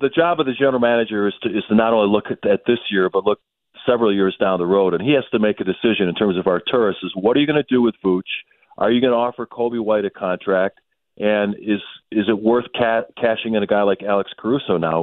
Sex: male